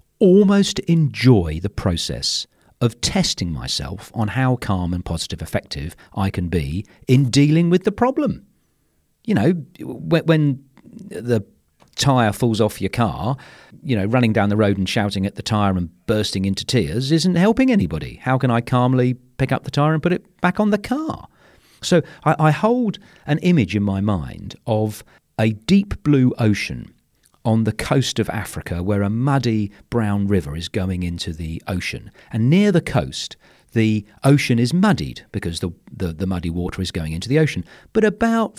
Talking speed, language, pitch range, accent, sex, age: 175 wpm, English, 95-150 Hz, British, male, 40-59